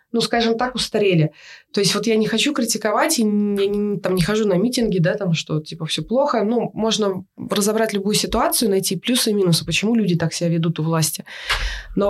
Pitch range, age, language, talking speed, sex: 170-205 Hz, 20-39, Russian, 200 wpm, female